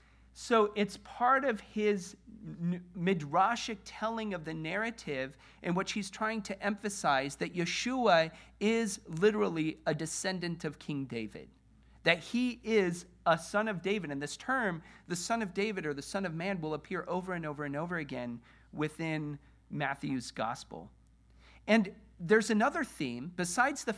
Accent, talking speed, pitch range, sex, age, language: American, 155 wpm, 165-220 Hz, male, 40-59, English